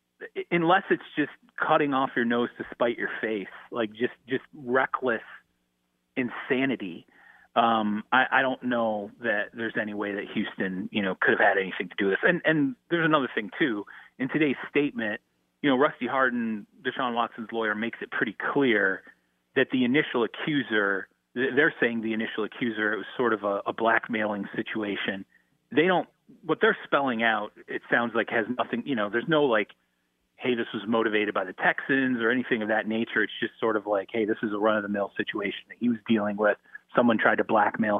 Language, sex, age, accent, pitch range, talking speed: English, male, 30-49, American, 105-125 Hz, 195 wpm